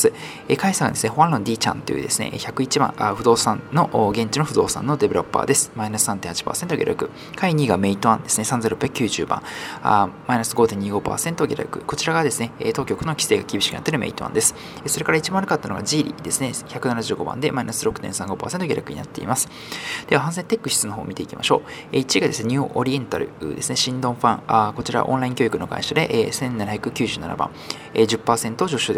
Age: 20-39